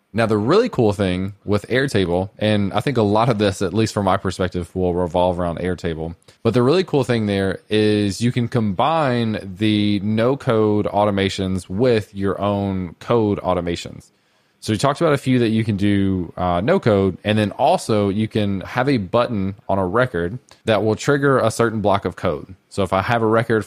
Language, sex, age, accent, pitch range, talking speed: English, male, 20-39, American, 95-115 Hz, 205 wpm